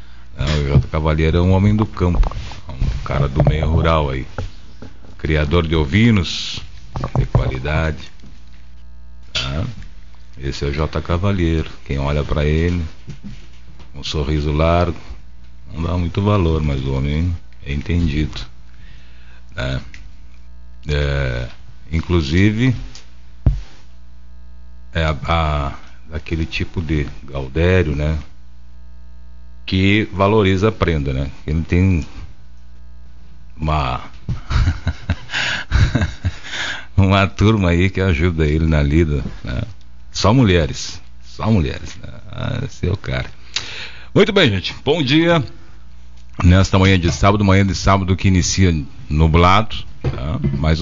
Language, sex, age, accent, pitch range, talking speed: Portuguese, male, 50-69, Brazilian, 65-90 Hz, 110 wpm